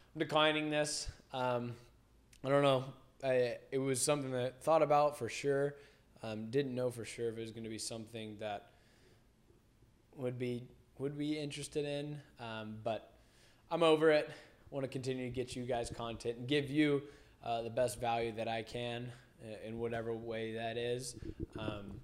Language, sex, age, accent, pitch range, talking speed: English, male, 20-39, American, 115-135 Hz, 170 wpm